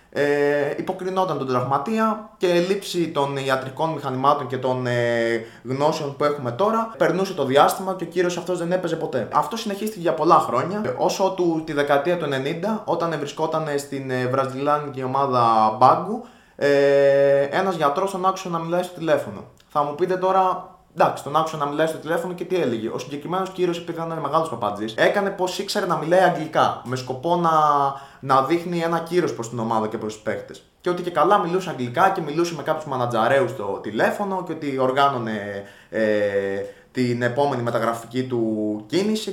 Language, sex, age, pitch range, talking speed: Greek, male, 20-39, 130-185 Hz, 170 wpm